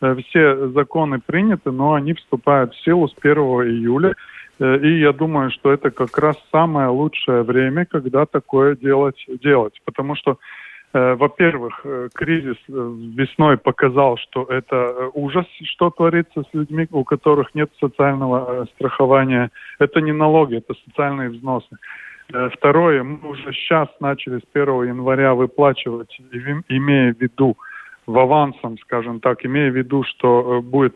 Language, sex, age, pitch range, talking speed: Russian, male, 20-39, 125-150 Hz, 135 wpm